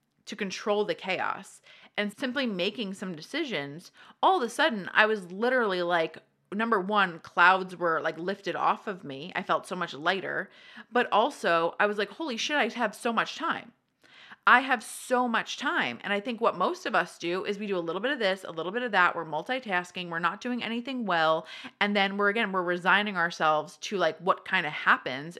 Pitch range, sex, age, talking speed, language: 175-215 Hz, female, 30-49, 210 wpm, English